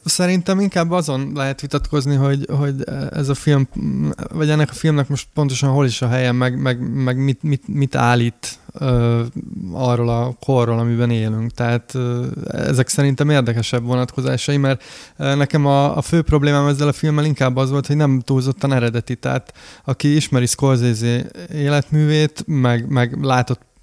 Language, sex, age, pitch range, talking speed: Hungarian, male, 20-39, 120-140 Hz, 160 wpm